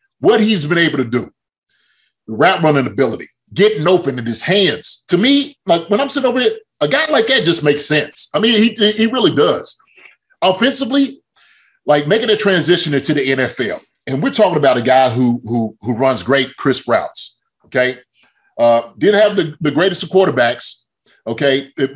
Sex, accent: male, American